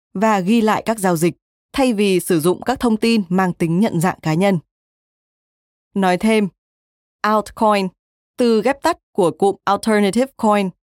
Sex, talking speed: female, 160 wpm